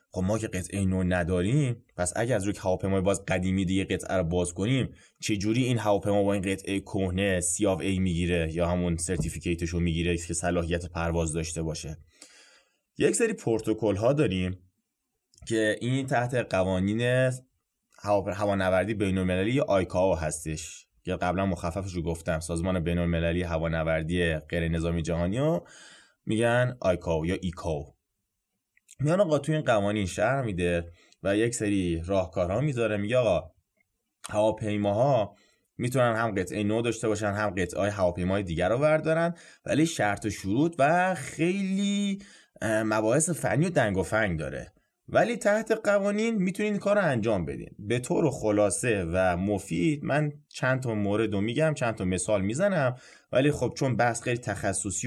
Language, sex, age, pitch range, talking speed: Persian, male, 20-39, 90-125 Hz, 150 wpm